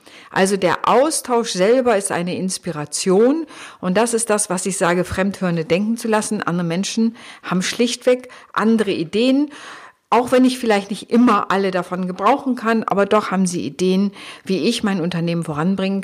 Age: 50-69